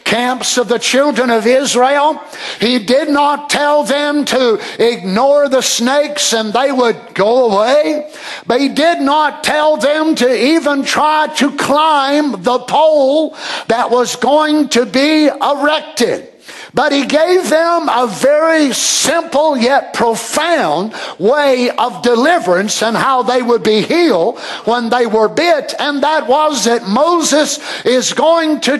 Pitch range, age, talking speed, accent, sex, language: 240-300 Hz, 60-79, 145 wpm, American, male, English